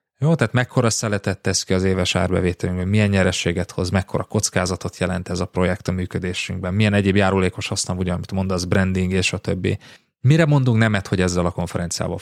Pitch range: 90-115 Hz